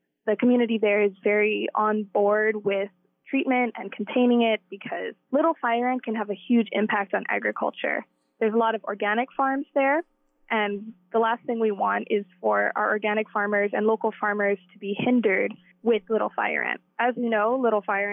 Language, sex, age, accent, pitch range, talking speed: English, female, 20-39, American, 205-240 Hz, 185 wpm